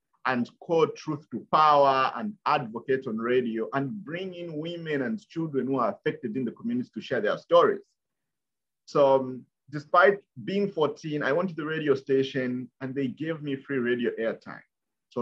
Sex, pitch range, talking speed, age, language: male, 115-165 Hz, 175 wpm, 50-69, English